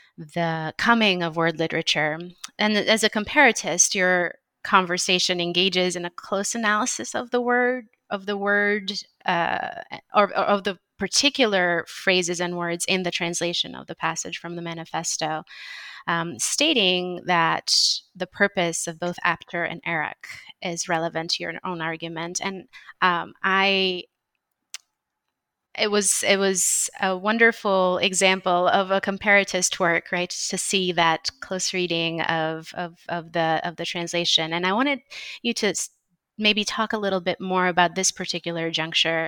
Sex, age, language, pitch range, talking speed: female, 30-49, English, 165-195 Hz, 150 wpm